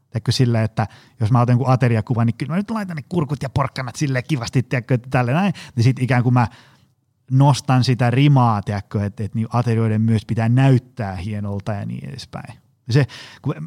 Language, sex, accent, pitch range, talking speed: Finnish, male, native, 120-145 Hz, 175 wpm